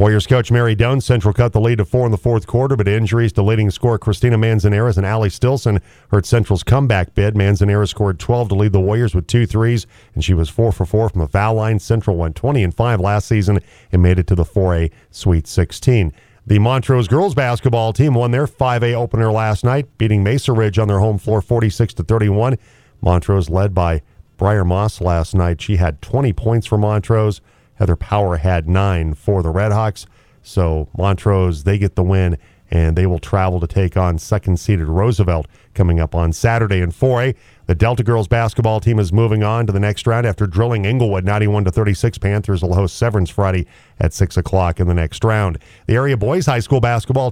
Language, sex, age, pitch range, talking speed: English, male, 40-59, 95-120 Hz, 205 wpm